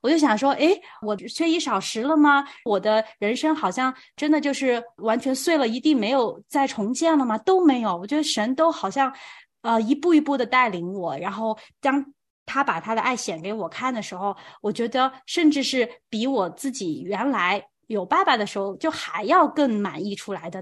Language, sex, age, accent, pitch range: Chinese, female, 20-39, native, 210-280 Hz